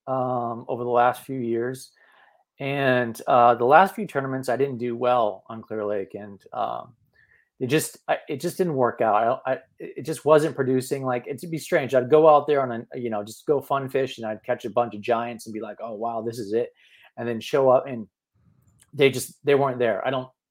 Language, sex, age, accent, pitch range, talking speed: English, male, 30-49, American, 115-140 Hz, 230 wpm